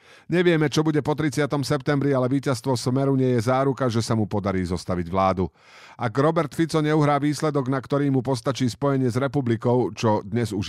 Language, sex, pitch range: Slovak, male, 105-145 Hz